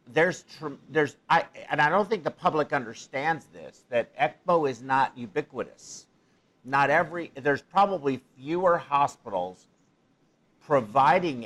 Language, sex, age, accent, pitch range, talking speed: English, male, 50-69, American, 120-150 Hz, 120 wpm